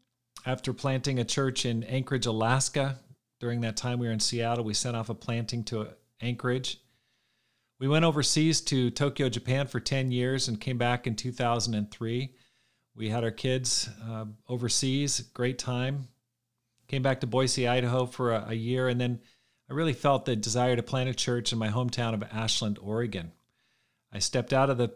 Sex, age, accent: male, 40-59, American